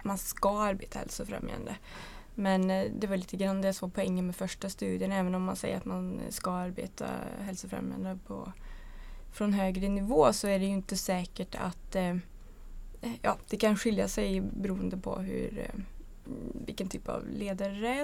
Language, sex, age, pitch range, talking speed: Swedish, female, 20-39, 185-210 Hz, 155 wpm